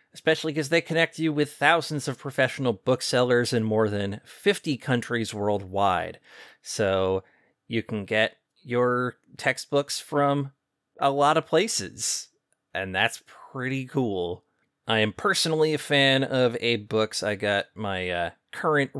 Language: English